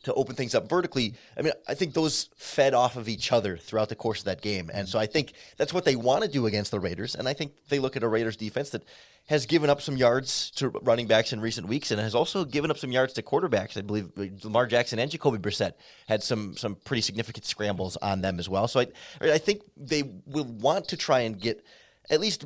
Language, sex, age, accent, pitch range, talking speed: English, male, 30-49, American, 105-140 Hz, 250 wpm